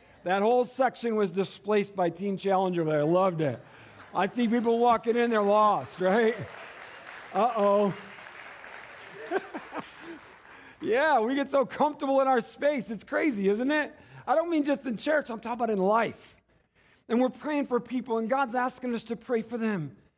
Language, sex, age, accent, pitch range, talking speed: English, male, 50-69, American, 175-250 Hz, 170 wpm